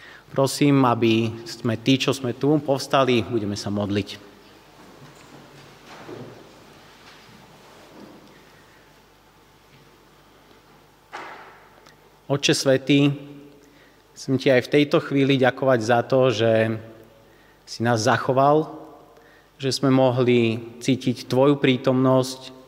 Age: 30-49